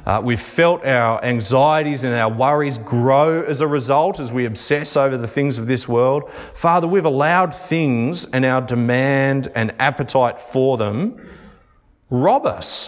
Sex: male